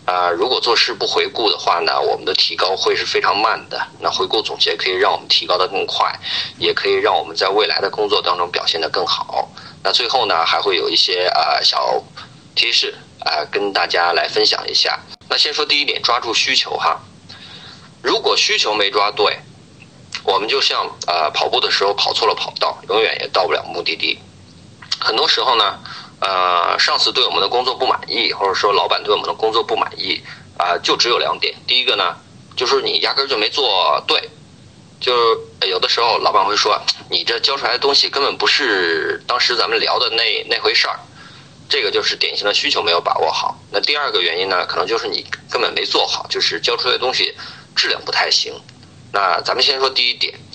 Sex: male